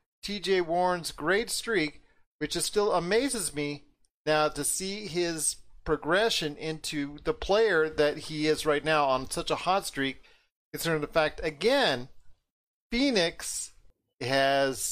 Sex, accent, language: male, American, English